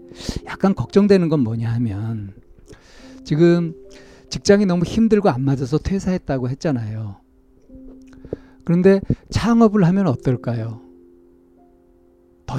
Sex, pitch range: male, 120-170 Hz